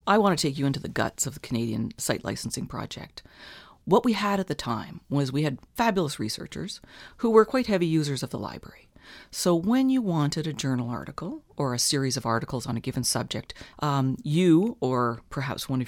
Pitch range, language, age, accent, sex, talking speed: 125-165 Hz, English, 40-59, American, female, 210 wpm